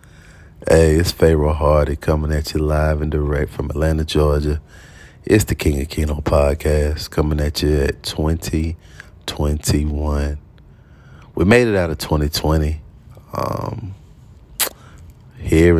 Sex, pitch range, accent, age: male, 75-100 Hz, American, 30-49